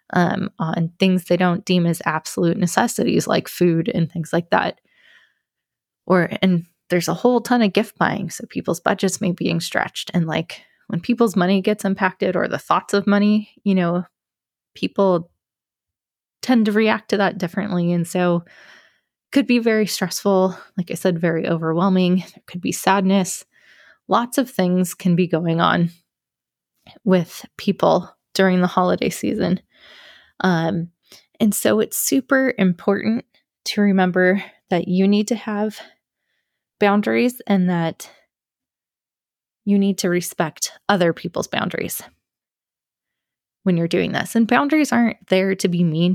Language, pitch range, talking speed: English, 175-215 Hz, 150 wpm